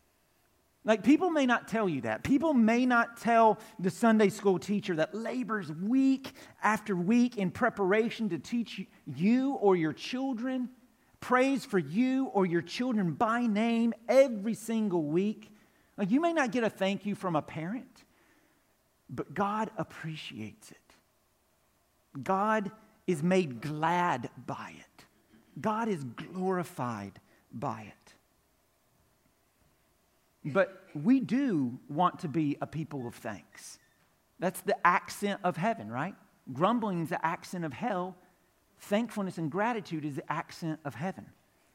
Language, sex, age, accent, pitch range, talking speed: English, male, 50-69, American, 165-230 Hz, 135 wpm